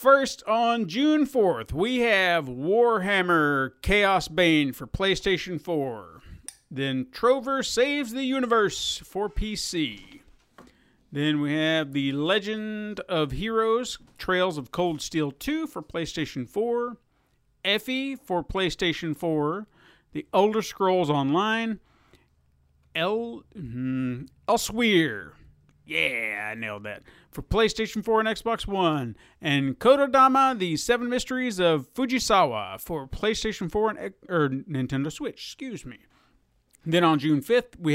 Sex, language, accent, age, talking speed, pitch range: male, English, American, 50-69, 120 wpm, 145-225 Hz